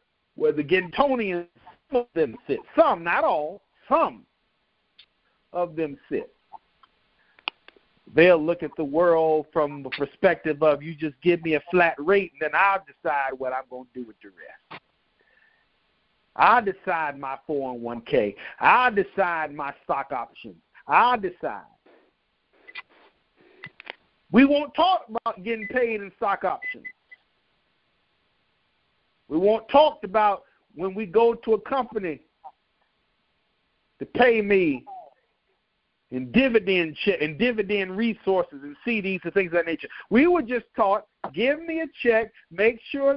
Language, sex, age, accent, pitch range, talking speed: English, male, 50-69, American, 180-245 Hz, 140 wpm